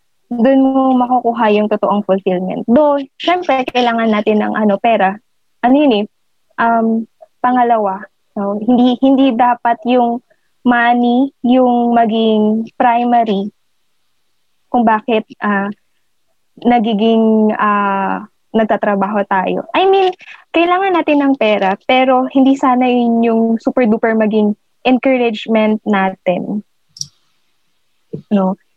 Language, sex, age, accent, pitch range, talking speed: English, female, 20-39, Filipino, 210-255 Hz, 105 wpm